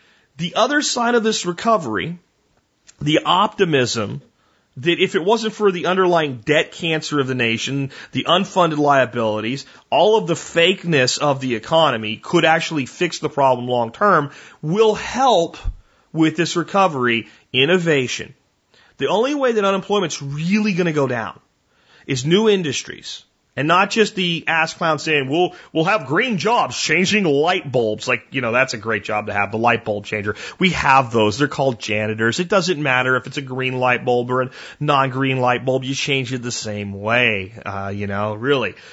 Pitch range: 125-180 Hz